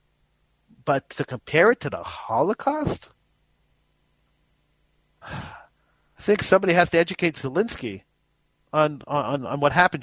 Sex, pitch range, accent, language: male, 135-170 Hz, American, English